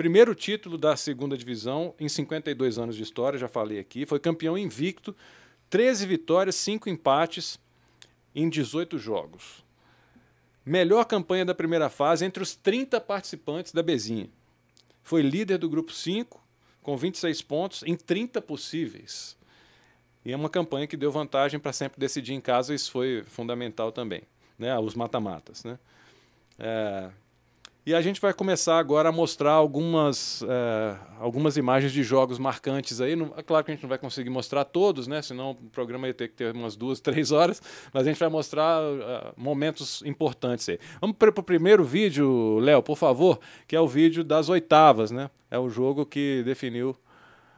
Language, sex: Portuguese, male